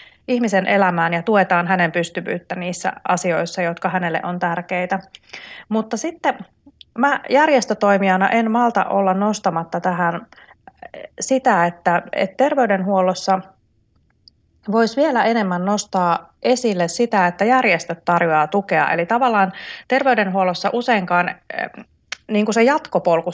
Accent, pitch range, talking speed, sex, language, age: native, 175-225 Hz, 110 wpm, female, Finnish, 30-49